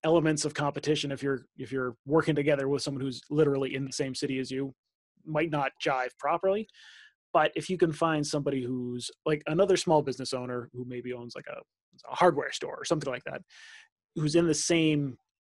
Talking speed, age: 200 wpm, 30-49